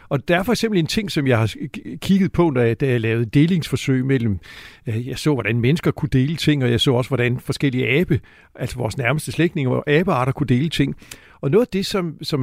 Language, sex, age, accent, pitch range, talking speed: Danish, male, 60-79, native, 130-180 Hz, 225 wpm